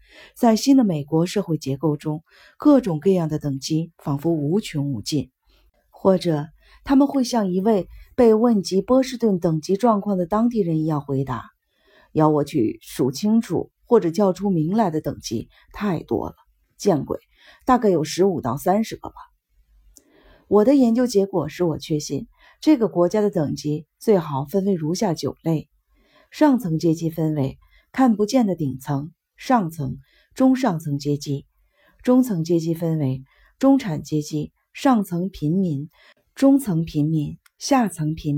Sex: female